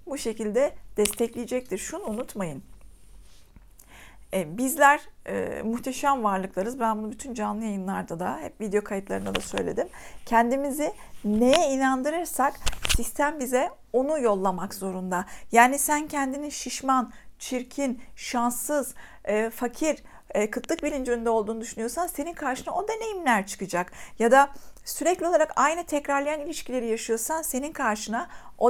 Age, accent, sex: 50-69, native, female